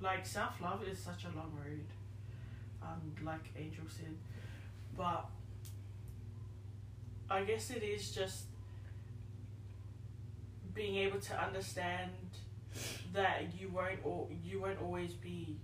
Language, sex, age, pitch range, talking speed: English, female, 20-39, 100-110 Hz, 115 wpm